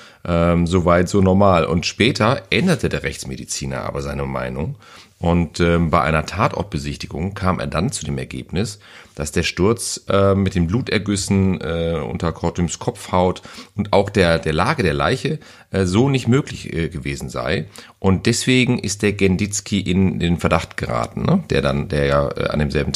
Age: 40-59